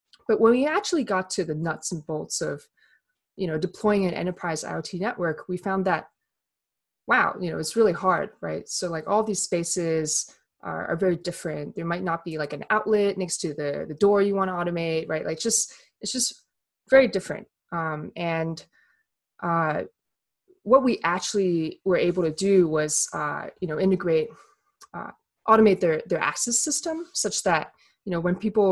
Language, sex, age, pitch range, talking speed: English, female, 20-39, 160-210 Hz, 180 wpm